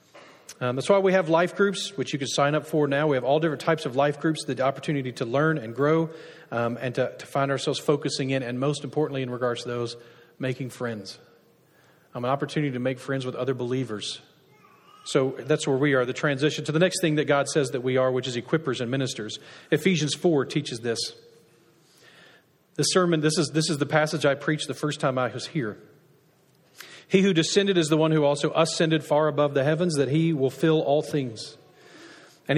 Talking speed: 215 wpm